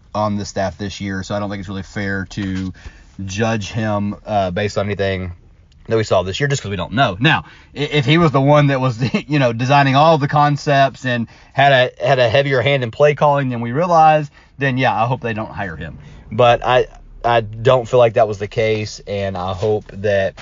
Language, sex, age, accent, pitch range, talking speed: English, male, 30-49, American, 100-125 Hz, 230 wpm